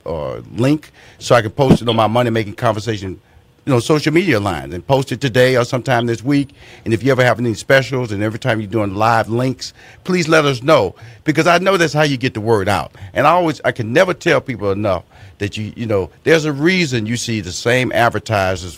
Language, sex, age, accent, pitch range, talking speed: English, male, 50-69, American, 105-140 Hz, 235 wpm